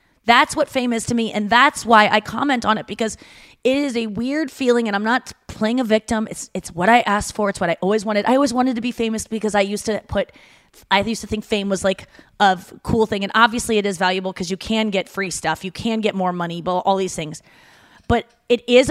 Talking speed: 255 wpm